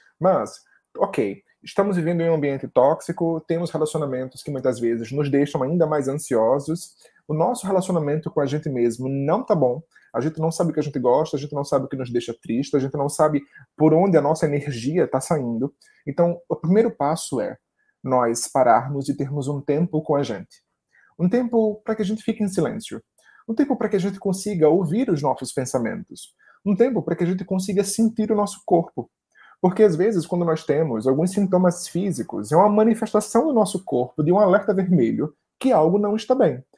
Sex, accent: male, Brazilian